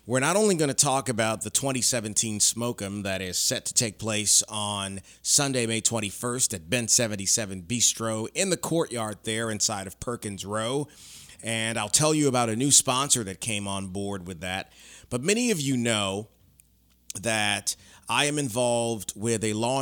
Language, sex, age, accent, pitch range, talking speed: English, male, 30-49, American, 100-120 Hz, 175 wpm